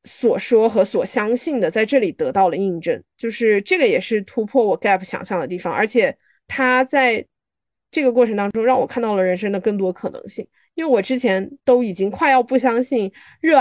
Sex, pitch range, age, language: female, 200-260 Hz, 20-39, Chinese